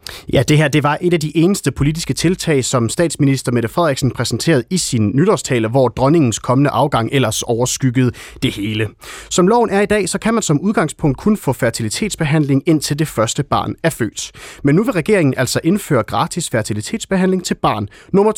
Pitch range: 120-175 Hz